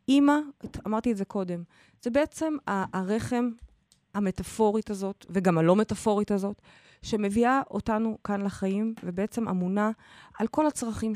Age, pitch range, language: 20-39, 185-245 Hz, Hebrew